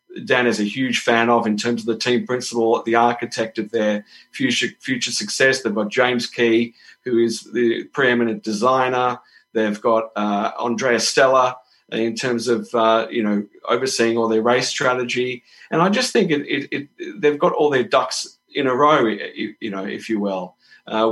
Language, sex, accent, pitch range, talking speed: English, male, Australian, 110-125 Hz, 190 wpm